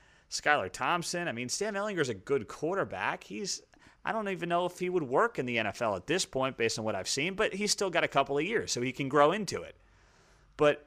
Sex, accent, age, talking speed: male, American, 30-49, 250 wpm